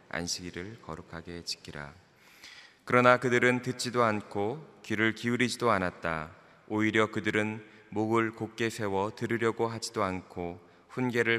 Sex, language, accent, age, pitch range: male, Korean, native, 20-39, 90-110 Hz